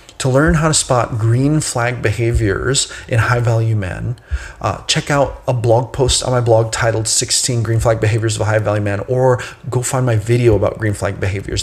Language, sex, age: English, male, 30-49